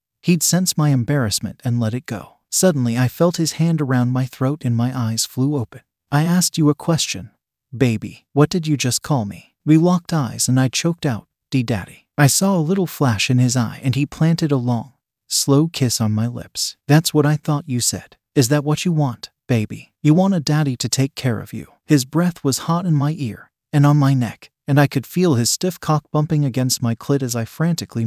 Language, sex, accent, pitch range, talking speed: English, male, American, 120-155 Hz, 225 wpm